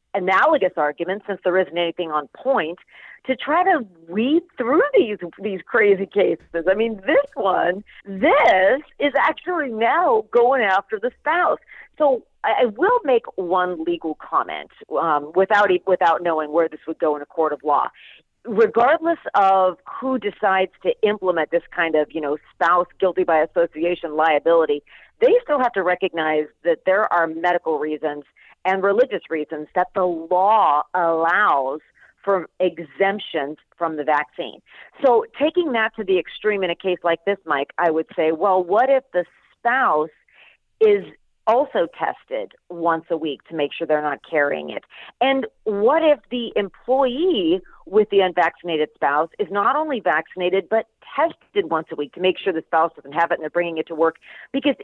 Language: English